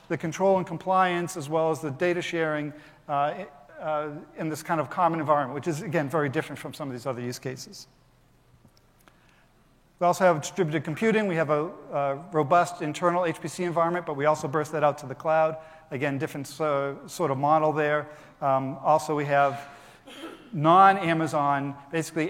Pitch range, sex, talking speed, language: 145-170 Hz, male, 170 wpm, English